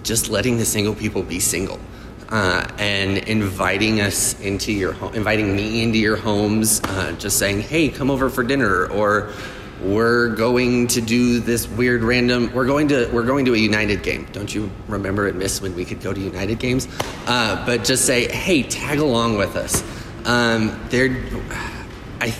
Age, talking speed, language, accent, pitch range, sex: 30-49, 180 wpm, English, American, 100-120 Hz, male